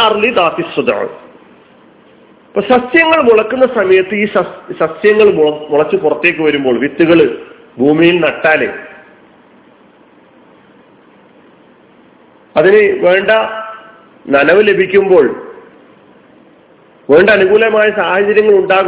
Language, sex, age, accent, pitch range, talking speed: Malayalam, male, 40-59, native, 160-230 Hz, 55 wpm